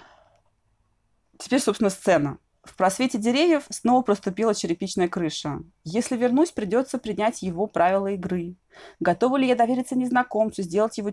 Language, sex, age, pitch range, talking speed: Russian, female, 20-39, 185-230 Hz, 130 wpm